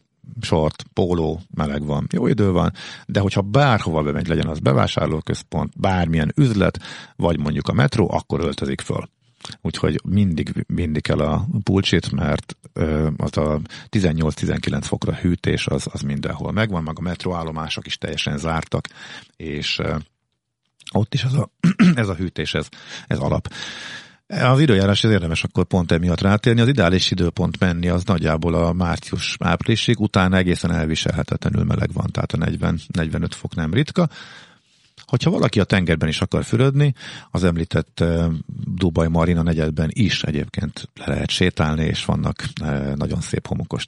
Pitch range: 80-105 Hz